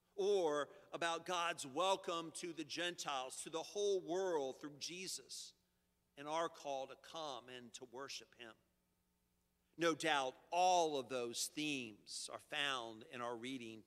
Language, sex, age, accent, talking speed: English, male, 50-69, American, 145 wpm